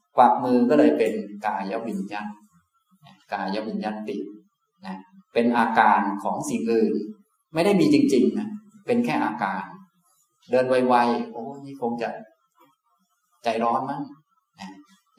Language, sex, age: Thai, male, 20-39